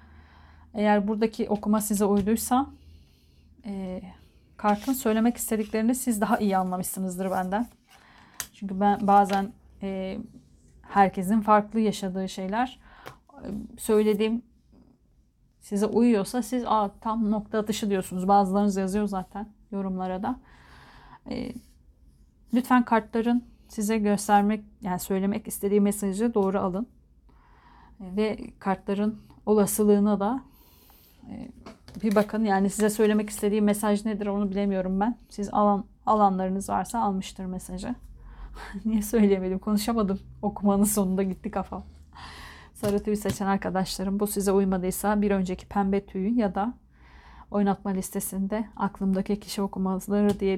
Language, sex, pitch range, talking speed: Turkish, female, 190-215 Hz, 115 wpm